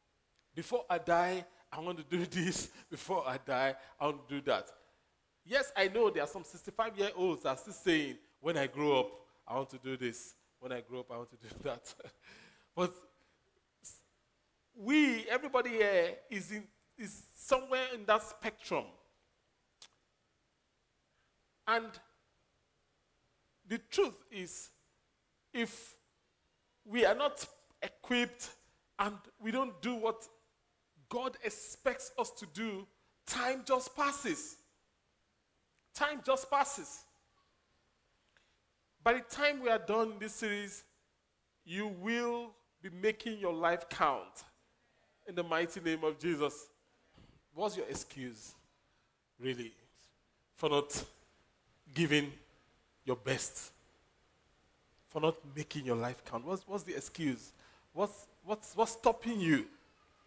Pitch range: 155-240 Hz